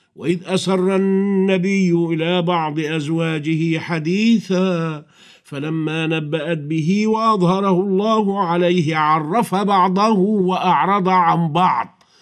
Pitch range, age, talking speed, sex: 160-225 Hz, 50-69, 90 wpm, male